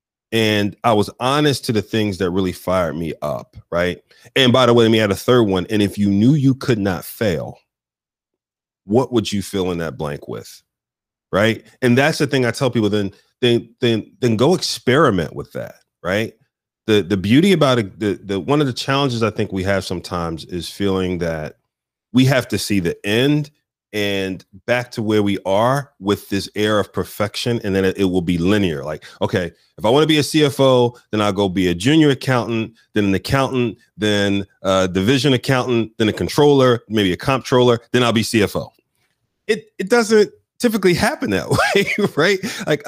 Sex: male